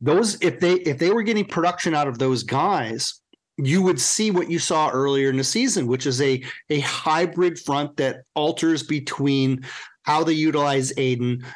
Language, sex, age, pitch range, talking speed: English, male, 40-59, 130-155 Hz, 180 wpm